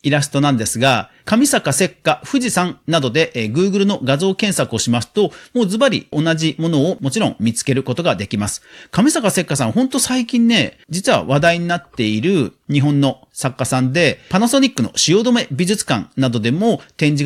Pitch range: 130-200 Hz